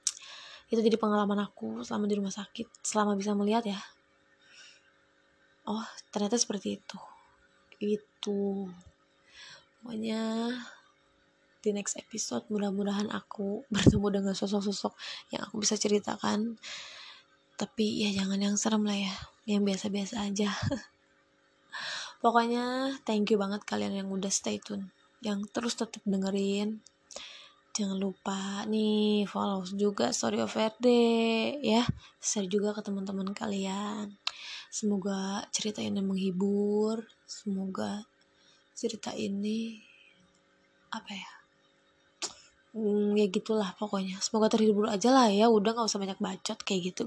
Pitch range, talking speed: 200-225 Hz, 115 wpm